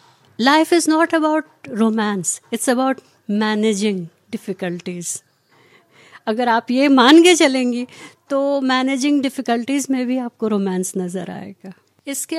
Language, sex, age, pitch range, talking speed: Hindi, female, 50-69, 210-275 Hz, 120 wpm